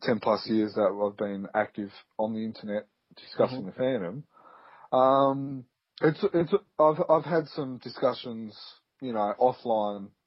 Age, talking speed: 30-49, 140 wpm